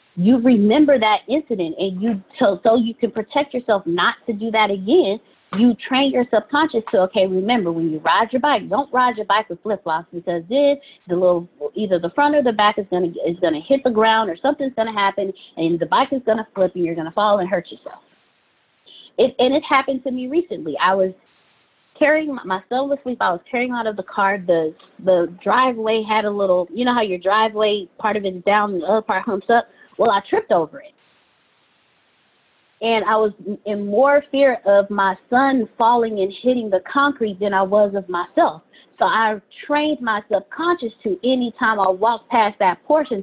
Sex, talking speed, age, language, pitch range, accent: female, 205 wpm, 20-39, English, 195-255 Hz, American